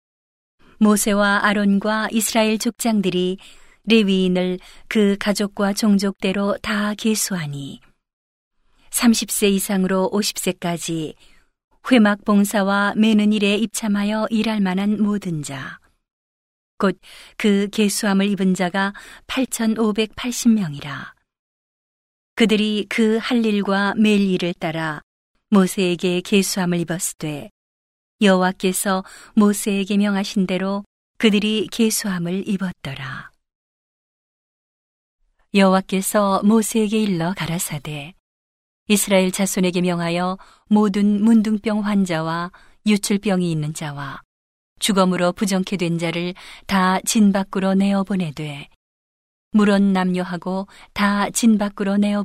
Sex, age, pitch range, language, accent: female, 40-59, 180-210 Hz, Korean, native